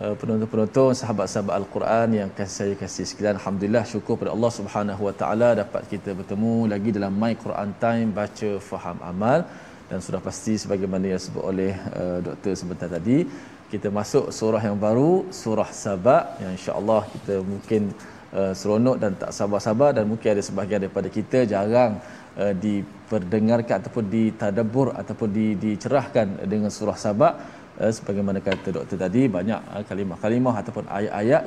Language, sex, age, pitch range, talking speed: Malayalam, male, 20-39, 100-115 Hz, 155 wpm